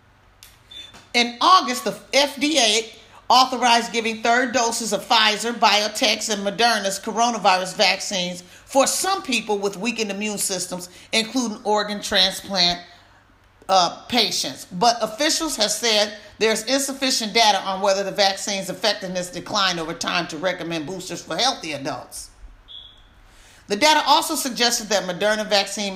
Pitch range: 175-235 Hz